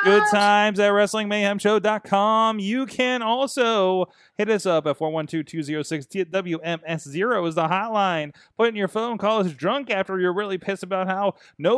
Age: 30-49